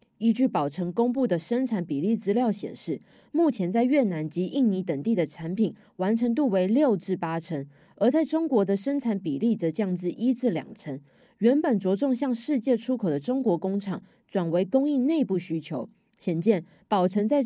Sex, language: female, Chinese